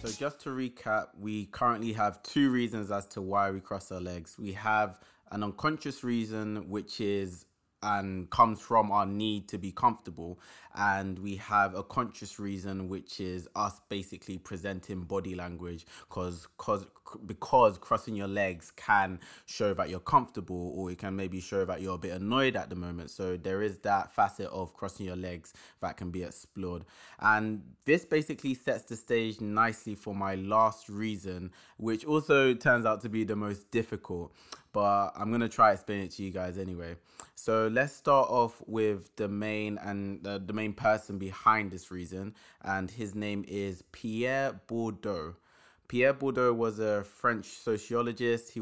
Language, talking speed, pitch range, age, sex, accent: English, 170 wpm, 95-110 Hz, 20-39, male, British